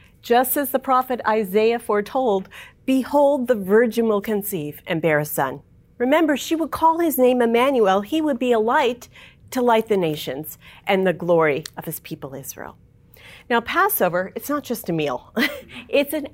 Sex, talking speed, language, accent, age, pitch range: female, 175 wpm, English, American, 40-59, 205-285 Hz